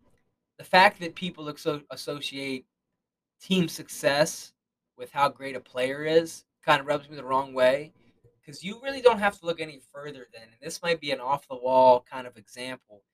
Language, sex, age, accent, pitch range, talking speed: English, male, 20-39, American, 125-165 Hz, 180 wpm